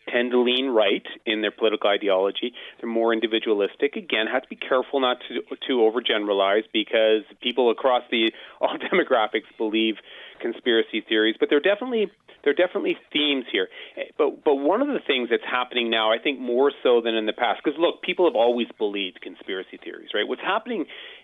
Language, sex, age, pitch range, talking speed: English, male, 30-49, 110-175 Hz, 185 wpm